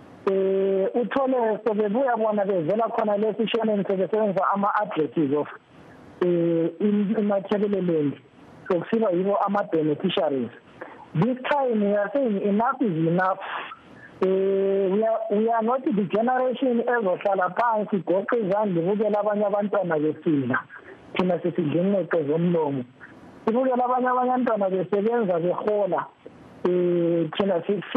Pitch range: 180-225 Hz